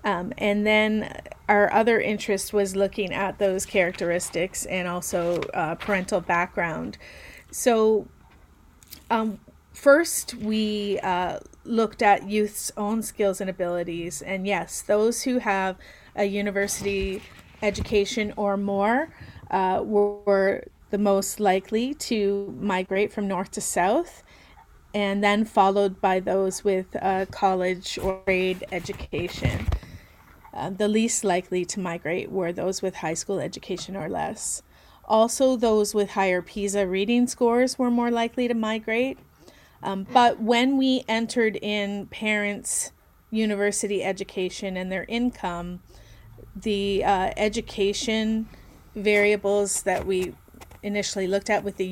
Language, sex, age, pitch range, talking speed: English, female, 30-49, 190-220 Hz, 125 wpm